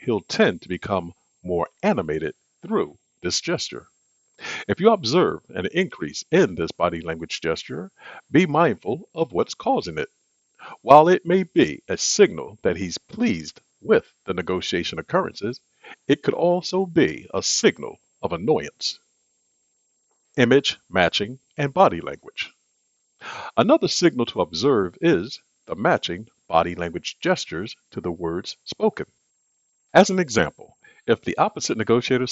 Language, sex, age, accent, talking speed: English, male, 50-69, American, 135 wpm